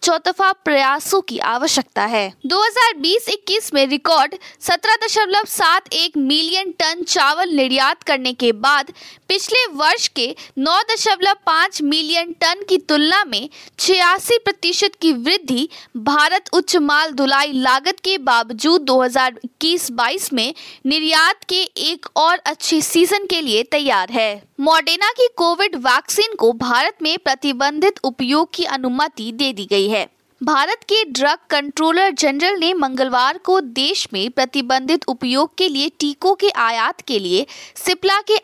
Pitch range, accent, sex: 270-370 Hz, native, female